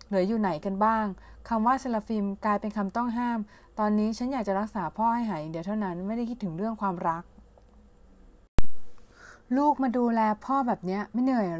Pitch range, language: 180-225 Hz, Thai